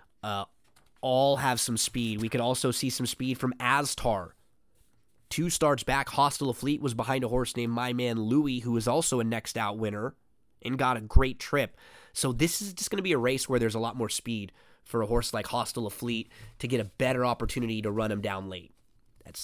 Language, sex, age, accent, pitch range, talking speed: English, male, 20-39, American, 115-130 Hz, 220 wpm